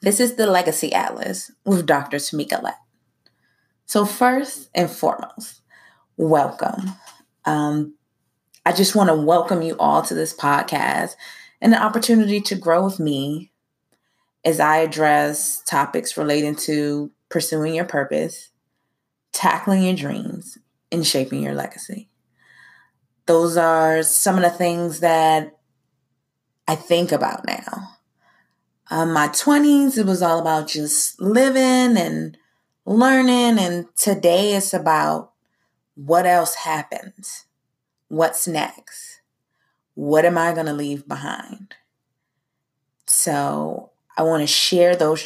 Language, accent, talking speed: English, American, 120 wpm